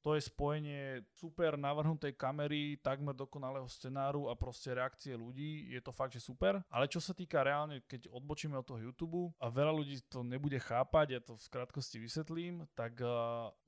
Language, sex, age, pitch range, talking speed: Slovak, male, 20-39, 125-155 Hz, 180 wpm